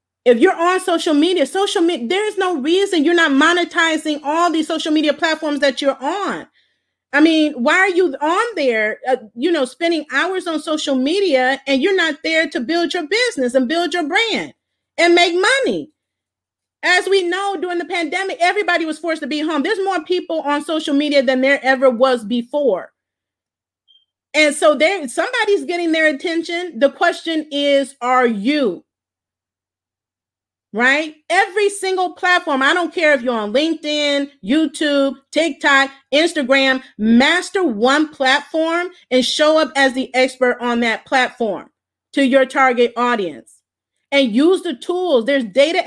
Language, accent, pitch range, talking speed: English, American, 265-340 Hz, 160 wpm